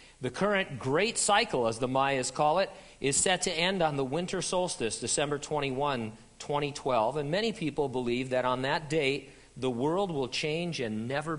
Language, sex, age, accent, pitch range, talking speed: English, male, 50-69, American, 125-160 Hz, 180 wpm